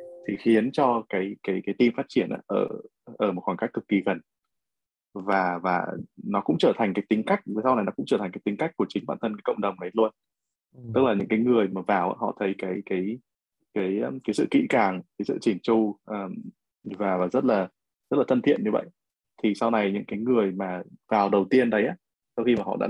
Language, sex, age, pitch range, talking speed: Vietnamese, male, 20-39, 95-110 Hz, 235 wpm